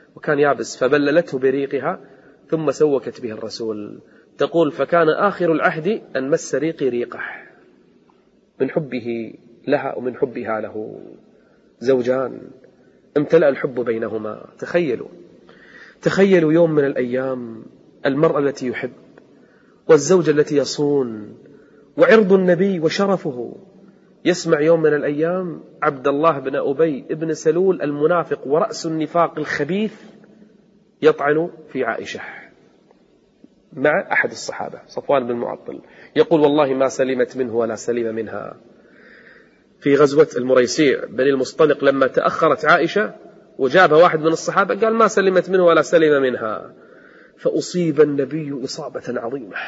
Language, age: Arabic, 30-49